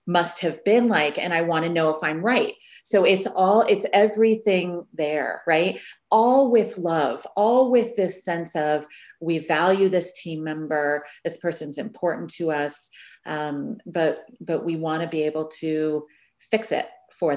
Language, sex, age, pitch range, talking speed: English, female, 30-49, 155-185 Hz, 170 wpm